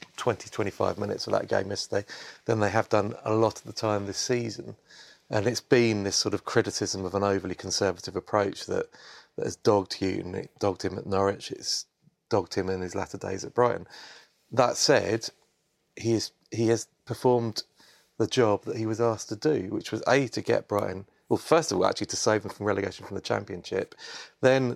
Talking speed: 200 wpm